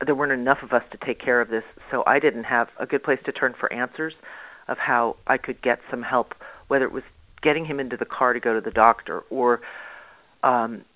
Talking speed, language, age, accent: 235 wpm, English, 40-59, American